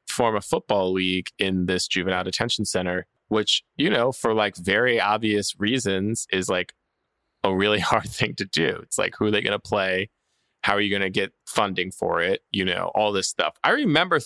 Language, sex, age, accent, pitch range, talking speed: English, male, 20-39, American, 100-130 Hz, 205 wpm